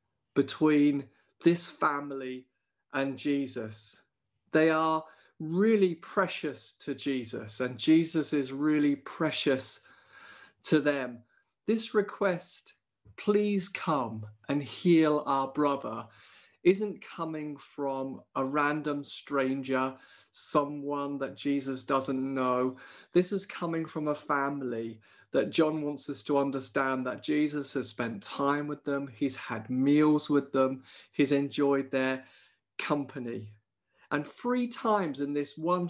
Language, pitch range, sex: English, 135-160 Hz, male